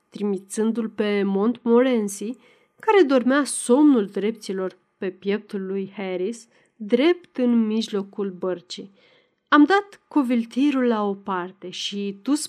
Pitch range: 200-280 Hz